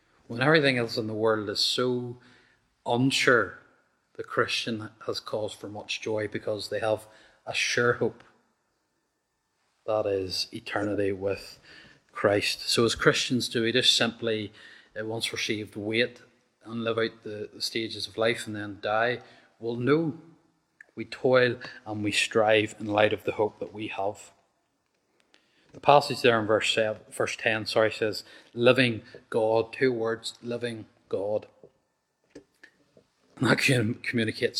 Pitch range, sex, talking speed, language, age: 110-130 Hz, male, 140 wpm, English, 30-49